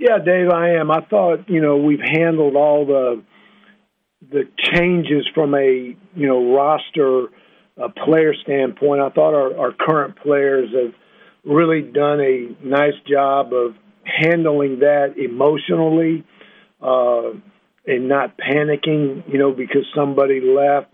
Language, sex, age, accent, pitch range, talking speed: English, male, 50-69, American, 135-155 Hz, 135 wpm